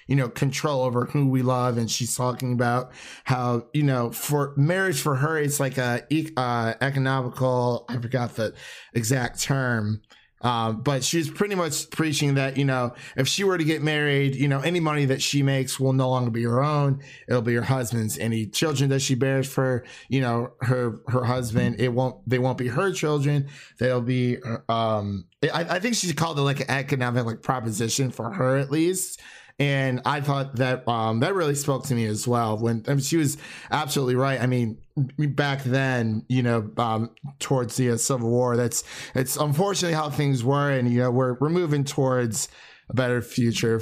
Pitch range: 120-145 Hz